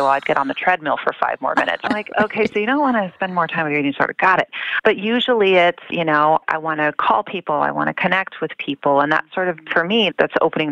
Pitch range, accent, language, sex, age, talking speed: 145-195 Hz, American, English, female, 30-49, 285 wpm